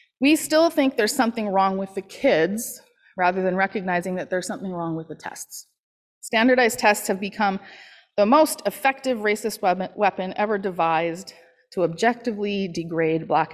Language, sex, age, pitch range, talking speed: English, female, 30-49, 185-245 Hz, 150 wpm